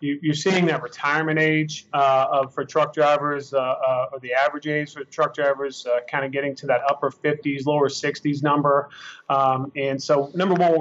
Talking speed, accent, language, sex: 205 wpm, American, English, male